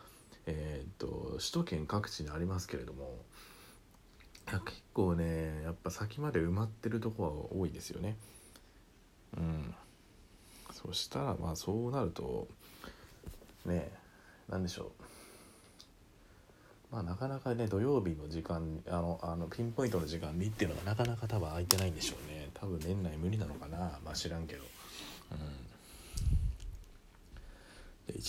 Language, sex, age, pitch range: Japanese, male, 40-59, 80-105 Hz